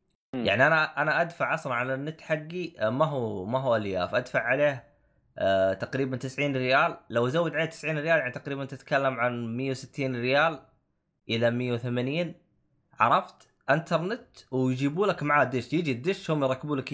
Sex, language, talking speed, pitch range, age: male, Arabic, 155 wpm, 130-190 Hz, 20-39